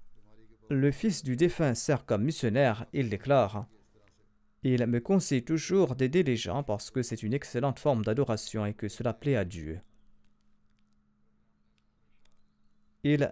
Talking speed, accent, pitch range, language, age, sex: 150 wpm, French, 110-145 Hz, French, 40-59, male